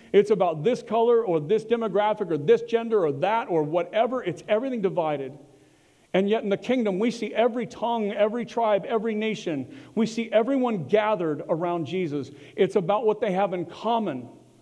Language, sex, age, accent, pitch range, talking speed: English, male, 50-69, American, 175-235 Hz, 175 wpm